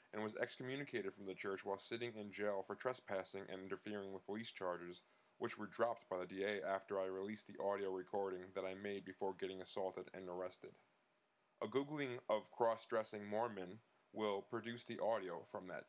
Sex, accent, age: male, American, 20-39